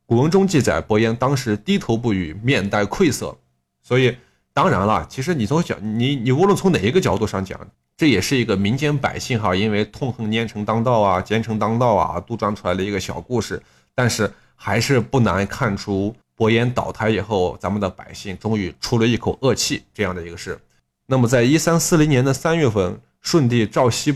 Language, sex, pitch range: Chinese, male, 100-135 Hz